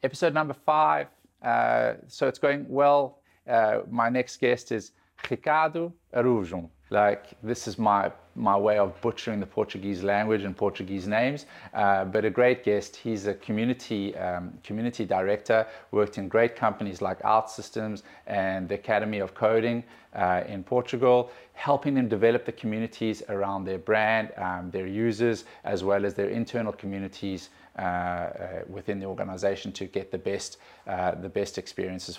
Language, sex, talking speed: English, male, 160 wpm